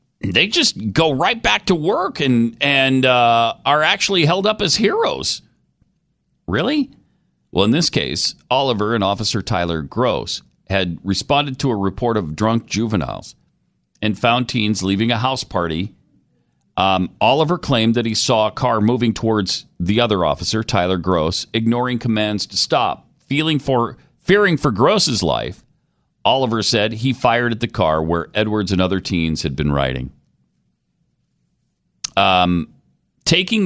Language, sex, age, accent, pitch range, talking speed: English, male, 40-59, American, 95-130 Hz, 150 wpm